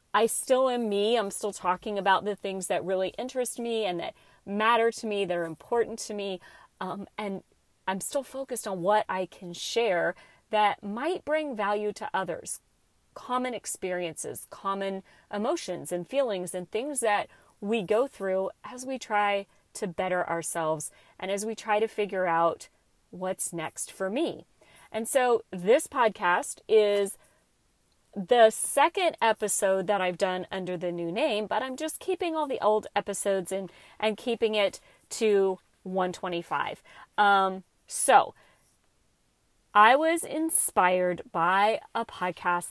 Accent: American